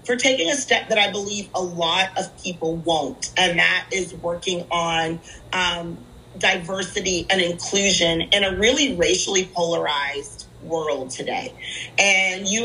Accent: American